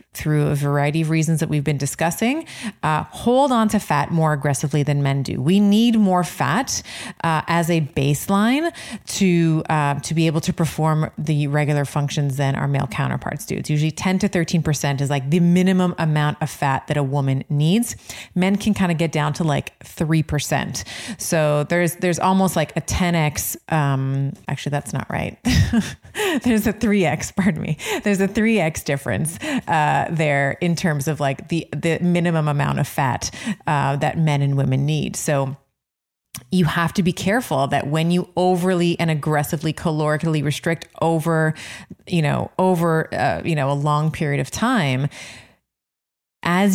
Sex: female